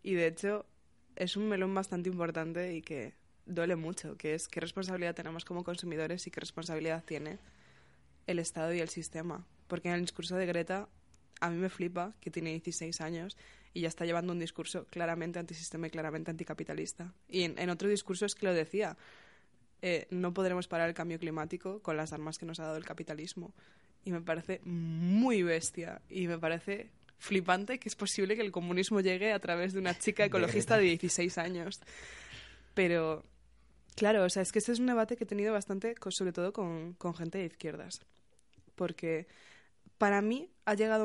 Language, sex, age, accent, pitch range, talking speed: Spanish, female, 20-39, Spanish, 165-195 Hz, 190 wpm